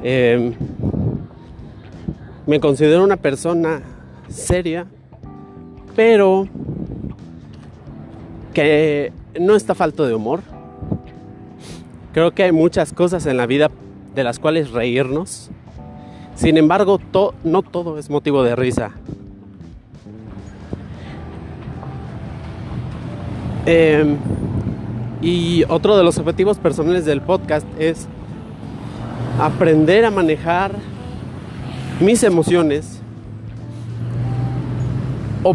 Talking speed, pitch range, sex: 85 wpm, 120-175 Hz, male